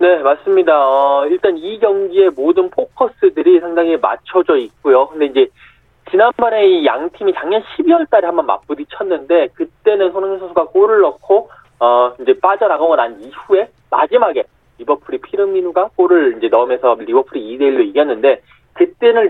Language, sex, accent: Korean, male, native